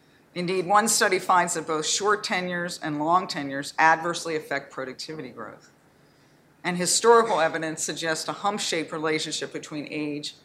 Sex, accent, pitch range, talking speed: female, American, 150-185 Hz, 140 wpm